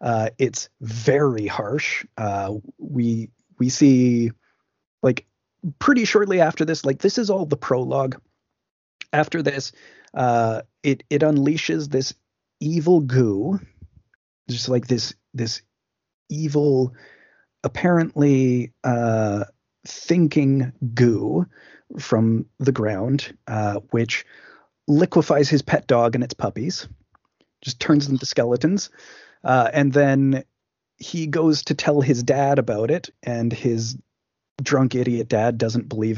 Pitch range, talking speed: 110-140 Hz, 120 wpm